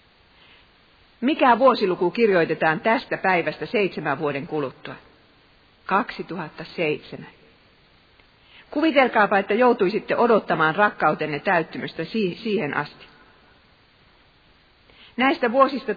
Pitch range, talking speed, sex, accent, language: 165-225 Hz, 70 wpm, female, native, Finnish